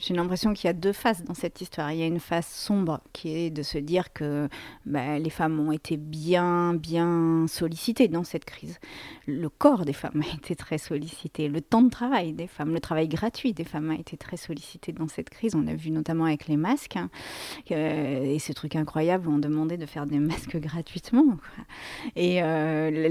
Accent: French